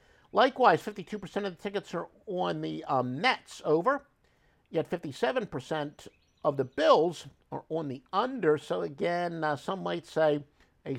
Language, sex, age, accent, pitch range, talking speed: English, male, 50-69, American, 140-215 Hz, 145 wpm